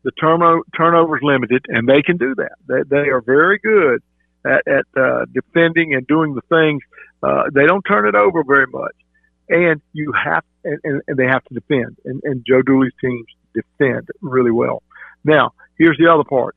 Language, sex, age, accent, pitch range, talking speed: English, male, 50-69, American, 125-170 Hz, 190 wpm